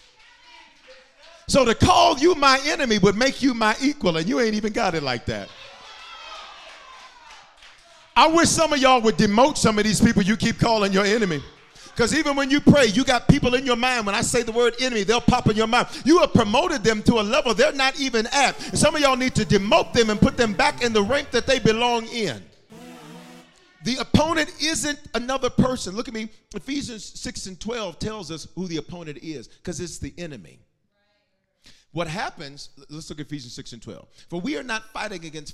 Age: 40-59